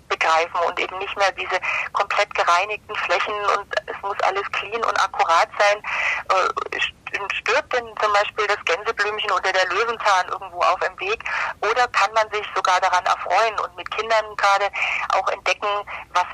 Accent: German